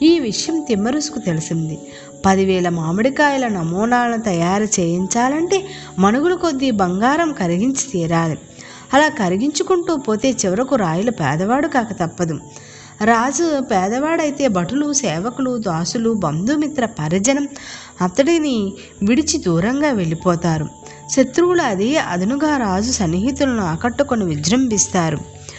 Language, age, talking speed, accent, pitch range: Telugu, 20-39, 90 wpm, native, 180-280 Hz